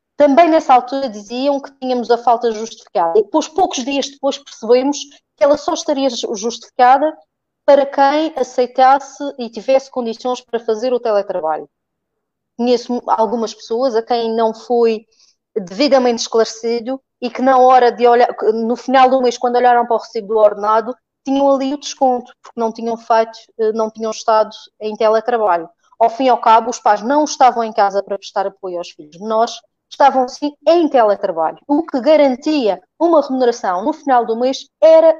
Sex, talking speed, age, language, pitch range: female, 170 wpm, 20-39, Portuguese, 230-290 Hz